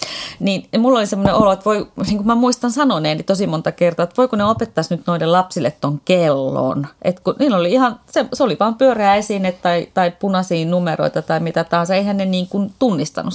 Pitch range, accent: 160-225 Hz, native